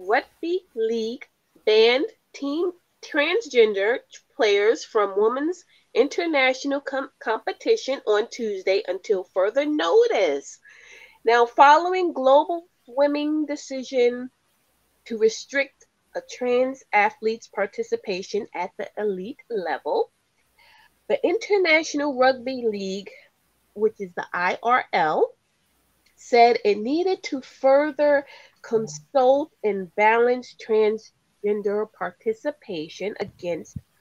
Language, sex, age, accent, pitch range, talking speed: English, female, 30-49, American, 220-360 Hz, 85 wpm